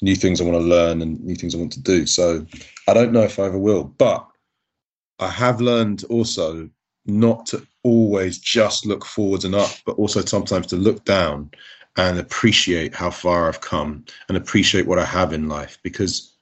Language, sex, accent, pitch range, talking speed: English, male, British, 85-110 Hz, 195 wpm